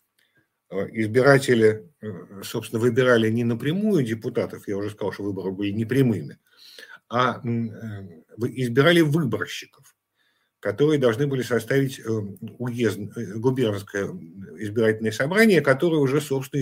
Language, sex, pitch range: Russian, male, 110-145 Hz